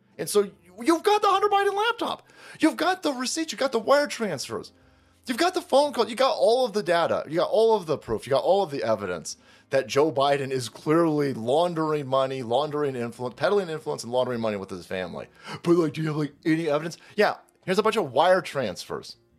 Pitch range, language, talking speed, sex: 140-220 Hz, English, 225 wpm, male